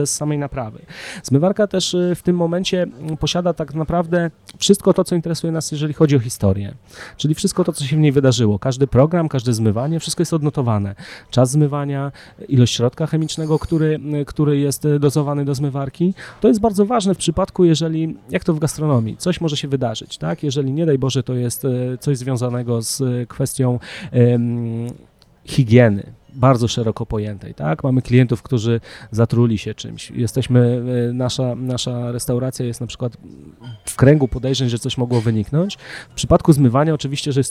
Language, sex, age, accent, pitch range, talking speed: Polish, male, 30-49, native, 120-155 Hz, 165 wpm